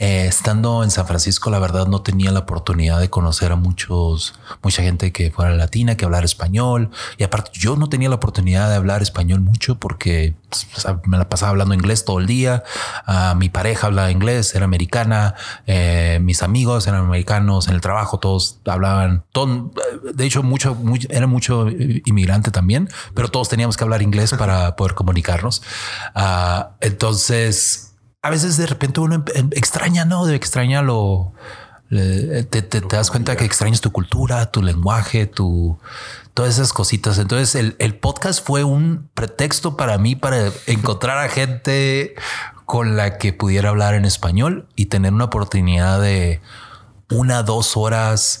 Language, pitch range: Spanish, 95-120 Hz